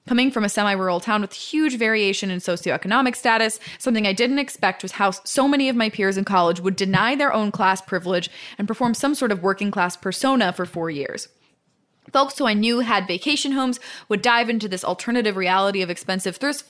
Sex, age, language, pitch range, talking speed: female, 20-39, English, 190-245 Hz, 205 wpm